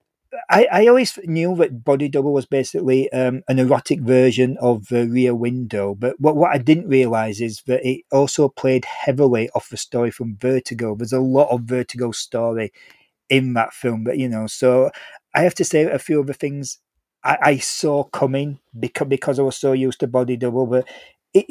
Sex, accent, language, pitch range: male, British, English, 125-155 Hz